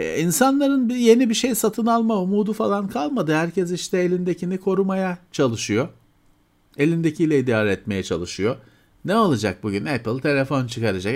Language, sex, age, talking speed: Turkish, male, 40-59, 130 wpm